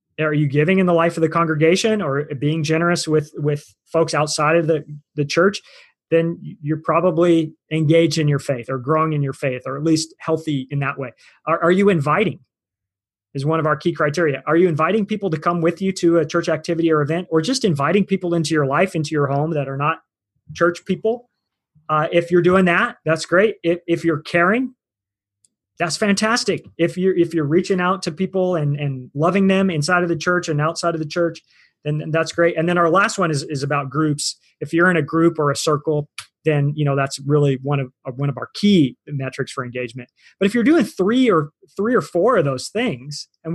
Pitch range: 150-180 Hz